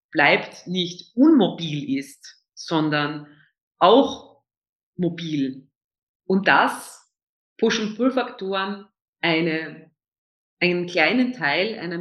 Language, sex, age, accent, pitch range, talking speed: German, female, 40-59, German, 165-210 Hz, 85 wpm